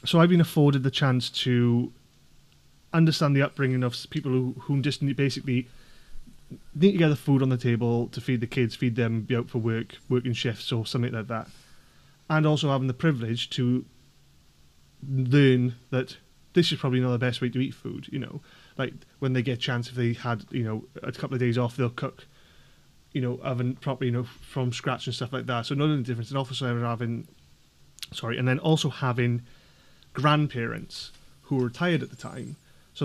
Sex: male